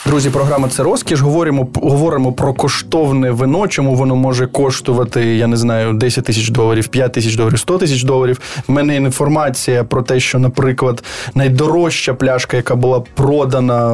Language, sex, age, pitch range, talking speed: Ukrainian, male, 20-39, 125-150 Hz, 160 wpm